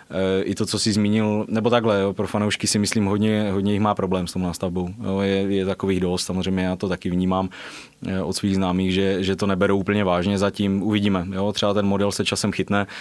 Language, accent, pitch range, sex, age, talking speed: Czech, native, 95-100 Hz, male, 20-39, 220 wpm